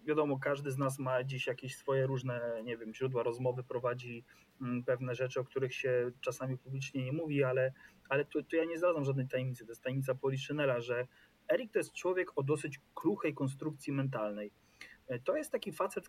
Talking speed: 185 wpm